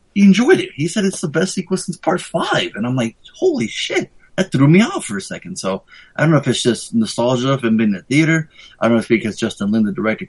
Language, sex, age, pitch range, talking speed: English, male, 20-39, 115-160 Hz, 280 wpm